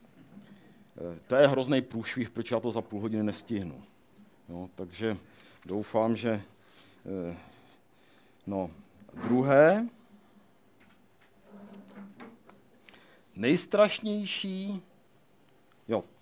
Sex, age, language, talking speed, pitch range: male, 50-69, Czech, 65 wpm, 110-165 Hz